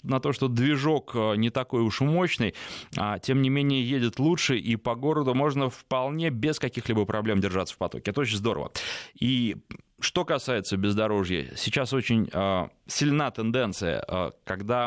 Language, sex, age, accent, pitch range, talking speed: Russian, male, 20-39, native, 105-135 Hz, 145 wpm